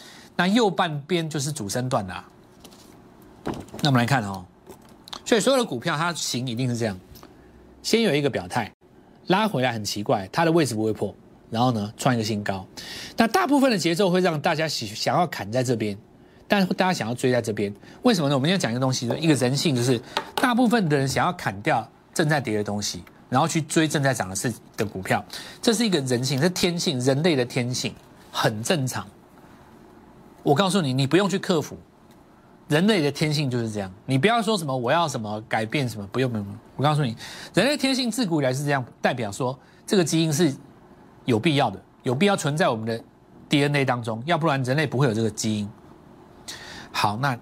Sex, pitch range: male, 115-170 Hz